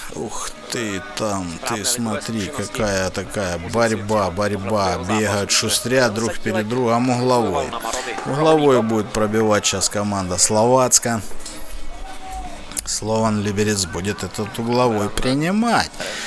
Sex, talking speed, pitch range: male, 100 wpm, 100-135 Hz